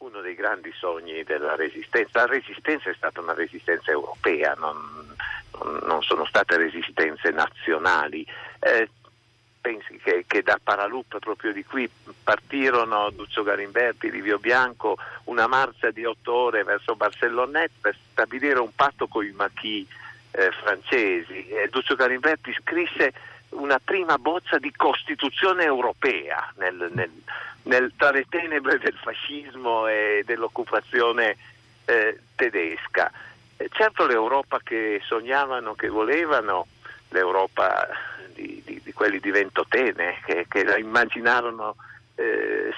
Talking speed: 125 wpm